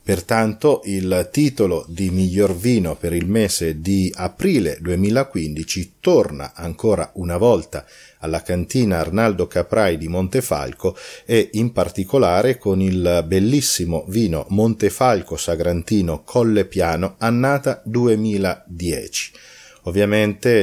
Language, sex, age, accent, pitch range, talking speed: Italian, male, 40-59, native, 85-105 Hz, 100 wpm